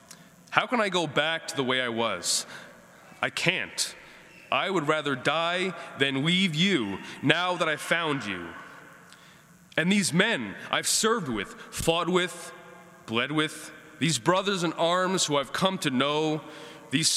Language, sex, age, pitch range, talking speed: English, male, 20-39, 140-175 Hz, 155 wpm